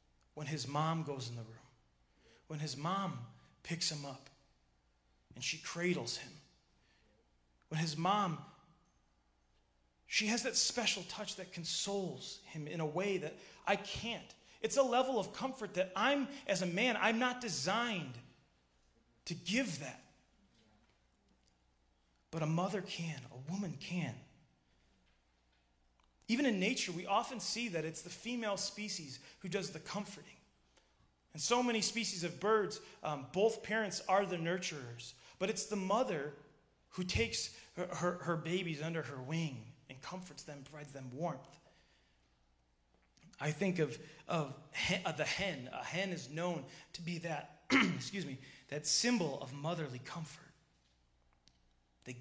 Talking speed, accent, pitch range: 145 wpm, American, 120-190 Hz